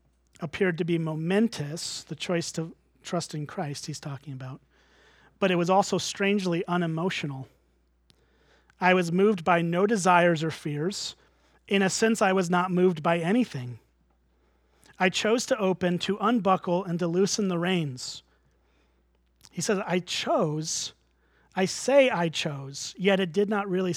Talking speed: 150 wpm